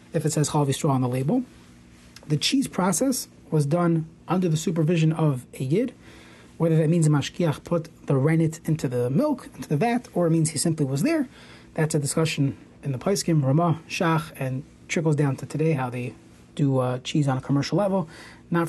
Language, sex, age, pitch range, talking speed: English, male, 30-49, 150-190 Hz, 205 wpm